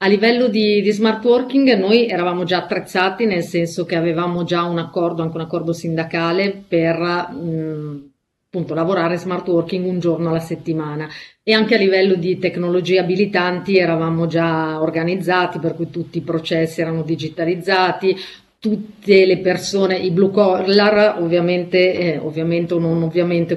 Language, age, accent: Italian, 40-59, native